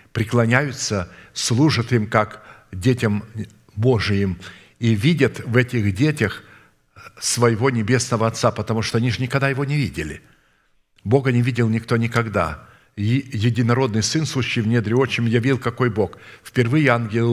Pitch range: 105-130 Hz